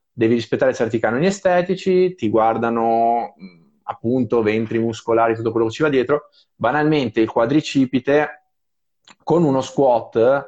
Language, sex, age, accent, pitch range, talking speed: Italian, male, 20-39, native, 110-135 Hz, 125 wpm